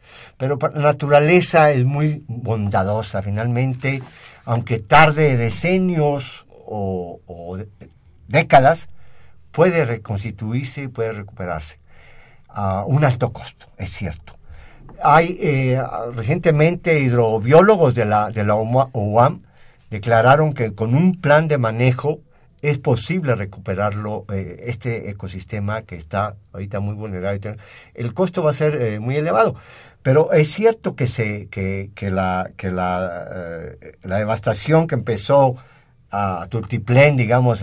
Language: Spanish